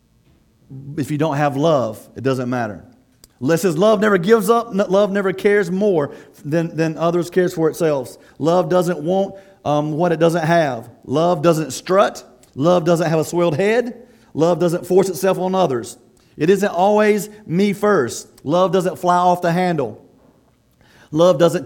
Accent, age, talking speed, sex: American, 40-59, 165 wpm, male